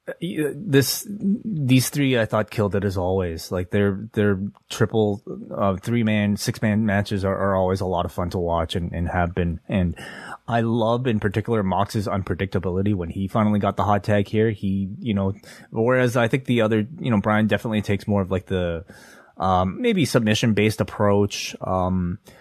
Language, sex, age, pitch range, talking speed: English, male, 20-39, 95-110 Hz, 180 wpm